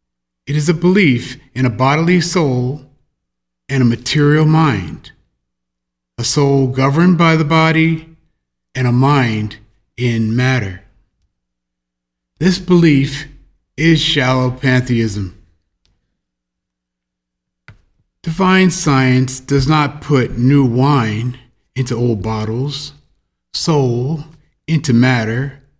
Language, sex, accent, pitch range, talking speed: English, male, American, 110-155 Hz, 95 wpm